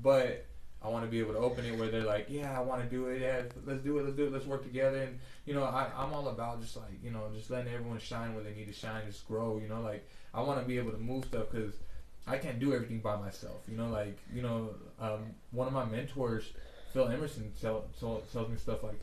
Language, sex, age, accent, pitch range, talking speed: English, male, 20-39, American, 110-130 Hz, 270 wpm